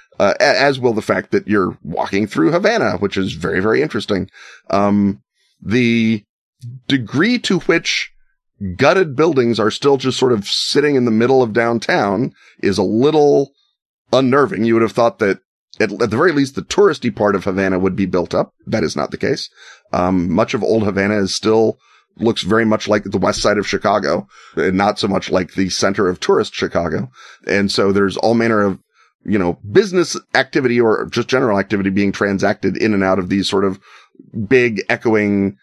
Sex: male